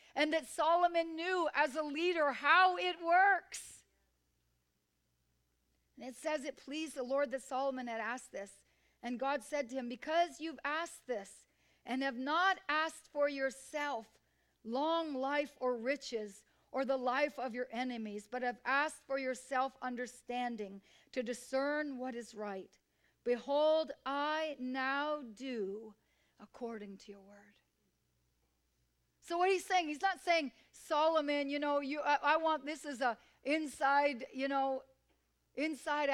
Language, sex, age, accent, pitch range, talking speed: English, female, 50-69, American, 220-290 Hz, 145 wpm